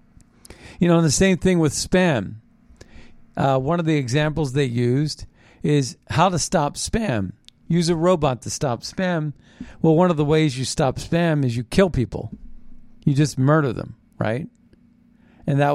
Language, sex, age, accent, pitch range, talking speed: English, male, 50-69, American, 130-180 Hz, 170 wpm